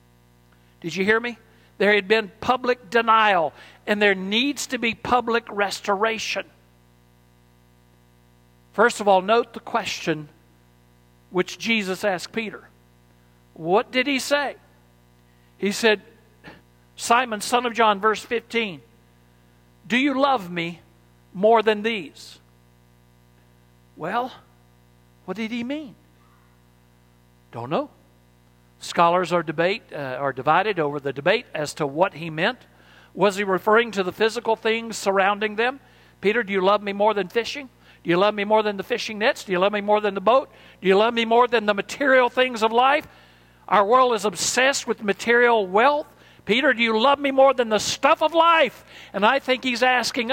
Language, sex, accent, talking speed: English, male, American, 160 wpm